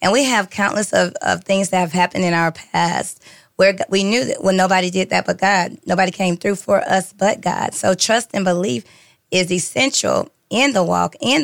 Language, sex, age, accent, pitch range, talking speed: English, female, 20-39, American, 185-220 Hz, 215 wpm